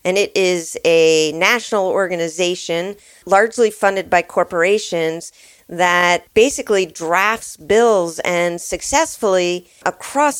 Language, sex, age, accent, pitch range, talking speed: English, female, 40-59, American, 175-230 Hz, 100 wpm